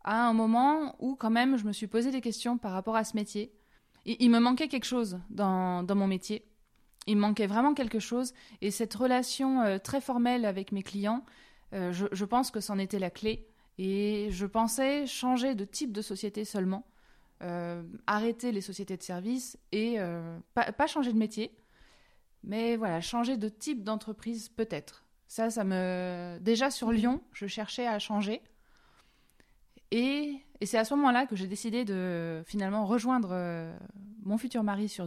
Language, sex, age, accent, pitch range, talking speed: French, female, 20-39, French, 200-245 Hz, 180 wpm